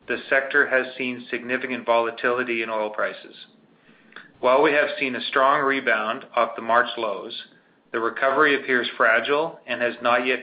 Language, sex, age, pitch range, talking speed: English, male, 40-59, 115-125 Hz, 160 wpm